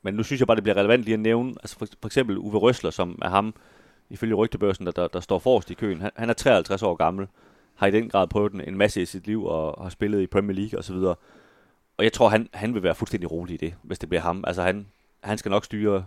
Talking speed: 280 wpm